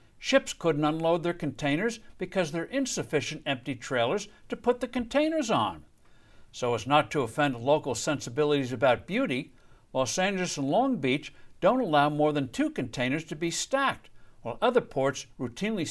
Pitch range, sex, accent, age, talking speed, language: 130-215 Hz, male, American, 60-79, 160 wpm, English